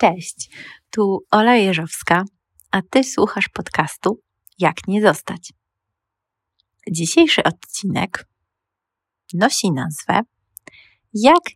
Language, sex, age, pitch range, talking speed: Polish, female, 20-39, 155-200 Hz, 85 wpm